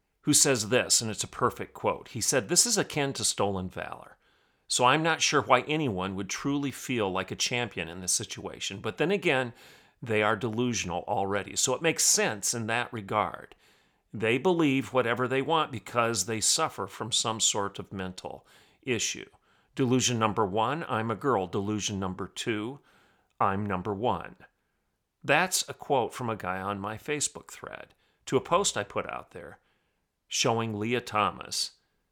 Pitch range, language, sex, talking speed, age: 105-135 Hz, English, male, 170 wpm, 40-59